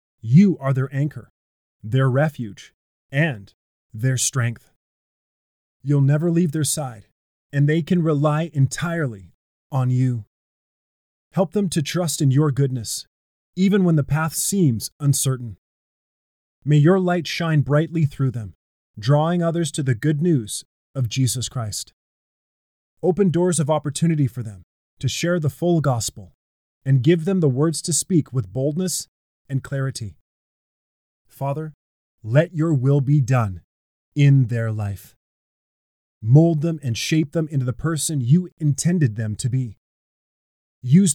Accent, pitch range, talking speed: American, 115-160 Hz, 140 wpm